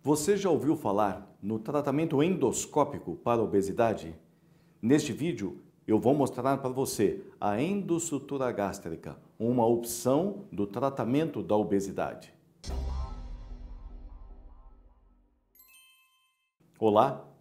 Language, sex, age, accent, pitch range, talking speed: Portuguese, male, 50-69, Brazilian, 110-160 Hz, 90 wpm